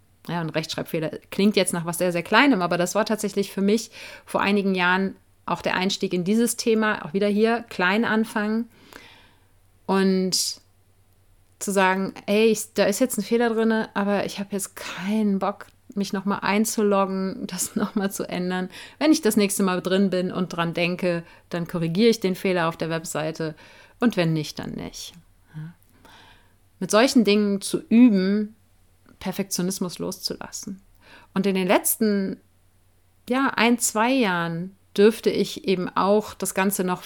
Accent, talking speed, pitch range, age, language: German, 160 wpm, 180-215 Hz, 30-49, German